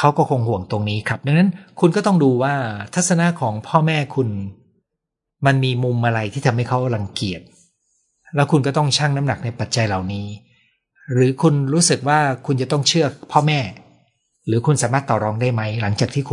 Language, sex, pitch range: Thai, male, 105-140 Hz